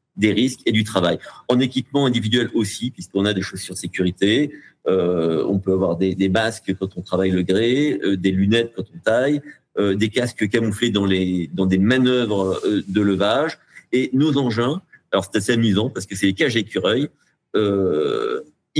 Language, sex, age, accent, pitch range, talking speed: French, male, 50-69, French, 100-145 Hz, 190 wpm